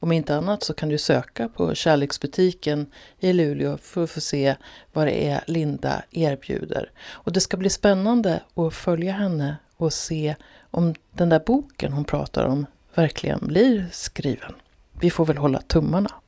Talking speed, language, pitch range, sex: 165 wpm, Swedish, 145-185 Hz, female